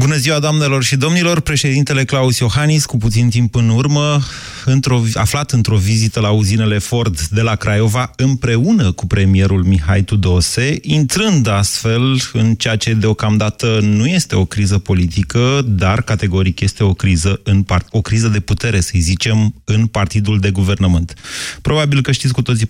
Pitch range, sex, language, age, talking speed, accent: 100-130 Hz, male, Romanian, 30-49, 160 wpm, native